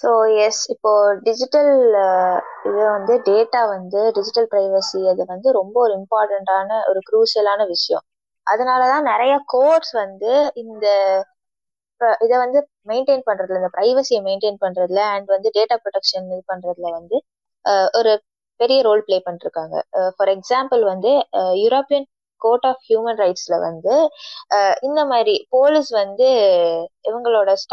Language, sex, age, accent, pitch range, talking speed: Tamil, female, 20-39, native, 190-235 Hz, 105 wpm